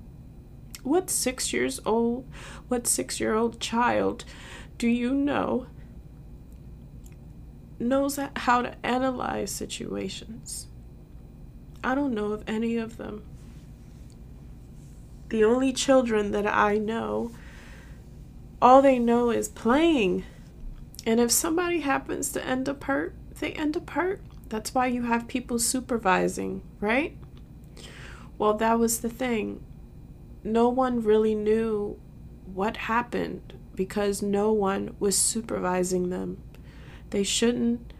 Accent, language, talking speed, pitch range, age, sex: American, English, 110 wpm, 195-245 Hz, 20-39, female